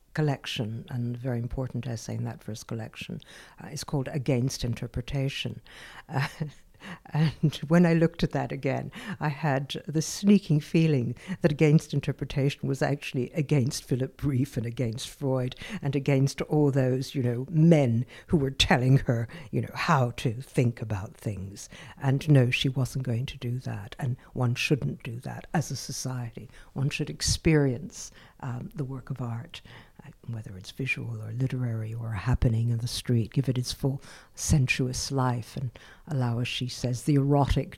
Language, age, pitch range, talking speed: English, 60-79, 120-145 Hz, 165 wpm